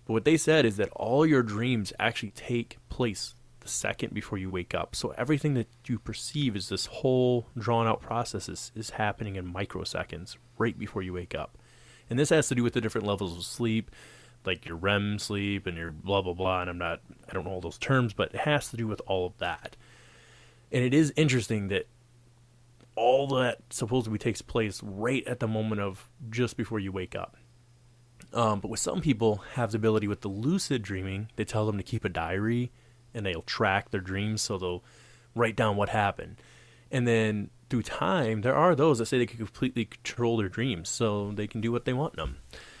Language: English